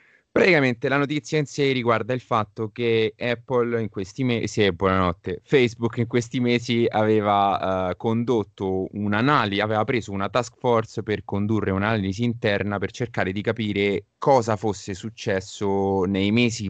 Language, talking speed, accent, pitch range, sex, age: Italian, 145 wpm, native, 100-130 Hz, male, 20-39